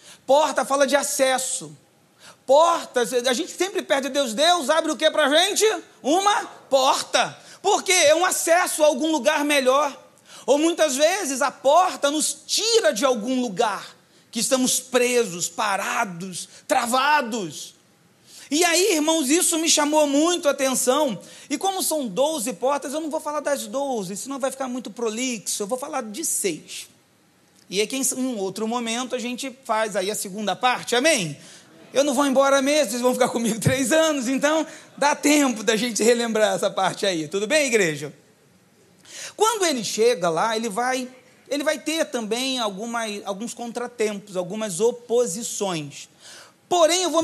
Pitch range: 230-305 Hz